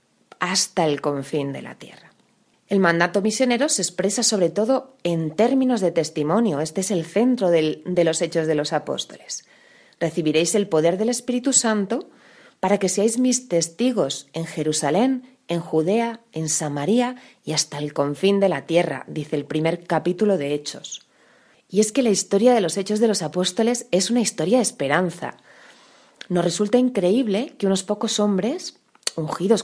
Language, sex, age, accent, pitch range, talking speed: Spanish, female, 30-49, Spanish, 160-225 Hz, 165 wpm